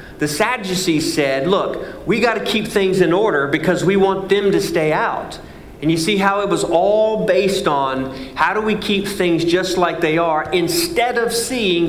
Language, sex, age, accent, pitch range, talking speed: English, male, 40-59, American, 140-200 Hz, 195 wpm